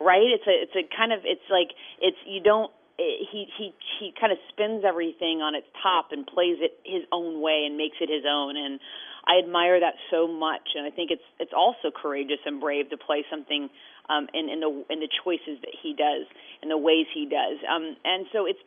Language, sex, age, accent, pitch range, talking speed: English, female, 30-49, American, 150-175 Hz, 230 wpm